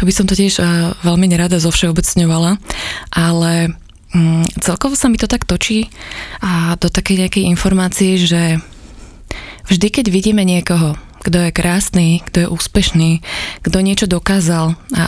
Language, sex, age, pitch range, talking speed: Slovak, female, 20-39, 170-190 Hz, 145 wpm